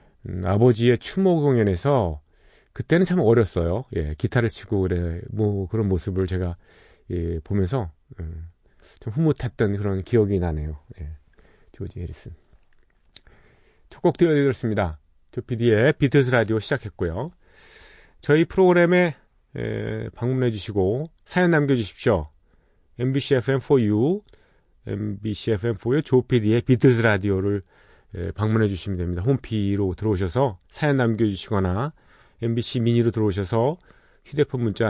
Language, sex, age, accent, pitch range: Korean, male, 40-59, native, 95-135 Hz